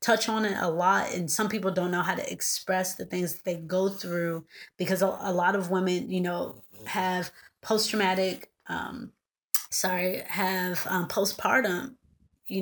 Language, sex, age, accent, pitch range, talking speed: English, female, 20-39, American, 180-205 Hz, 160 wpm